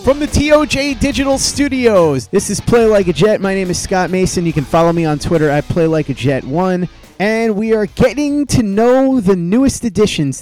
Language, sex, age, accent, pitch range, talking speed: English, male, 30-49, American, 145-190 Hz, 190 wpm